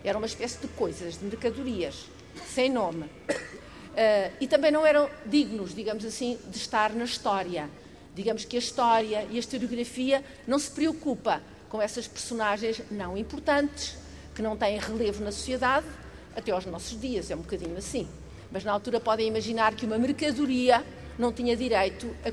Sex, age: female, 50-69